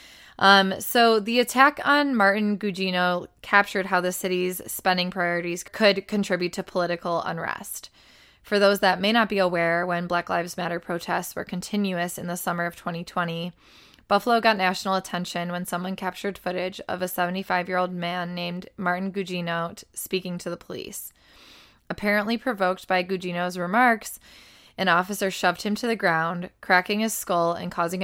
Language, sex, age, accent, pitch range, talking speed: English, female, 20-39, American, 175-210 Hz, 155 wpm